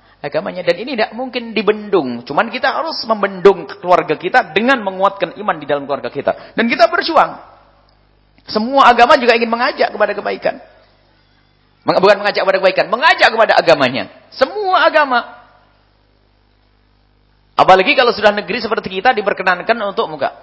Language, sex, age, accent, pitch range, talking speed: English, male, 40-59, Indonesian, 155-240 Hz, 140 wpm